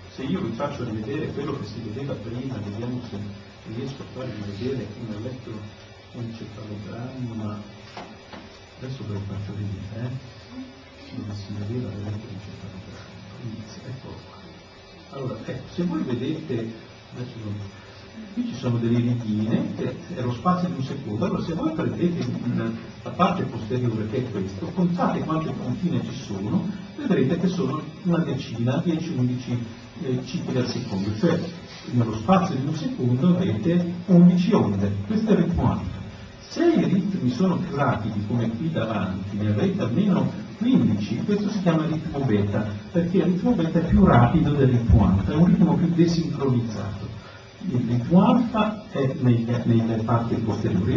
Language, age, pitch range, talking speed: Italian, 50-69, 105-160 Hz, 160 wpm